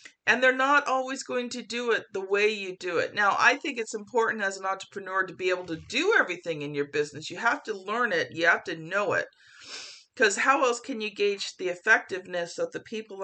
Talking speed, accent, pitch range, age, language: 230 wpm, American, 195-265 Hz, 50-69, English